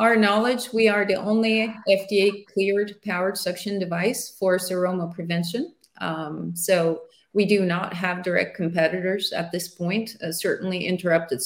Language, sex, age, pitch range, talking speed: English, female, 30-49, 175-205 Hz, 145 wpm